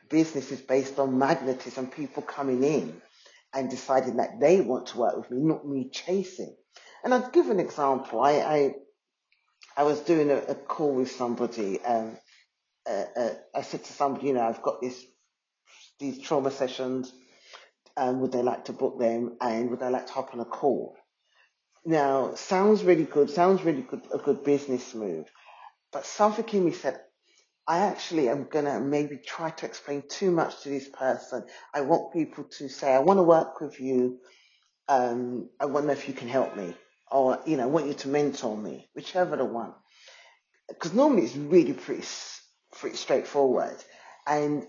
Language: English